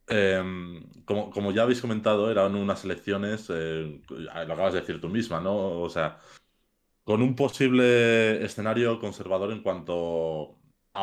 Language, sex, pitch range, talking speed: Spanish, male, 85-105 Hz, 145 wpm